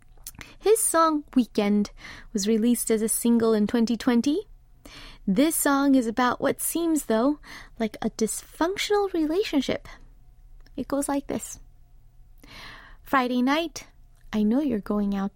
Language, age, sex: English, 20-39, female